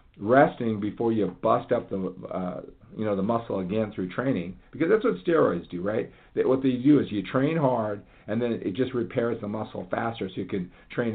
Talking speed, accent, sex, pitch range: 215 wpm, American, male, 90-115 Hz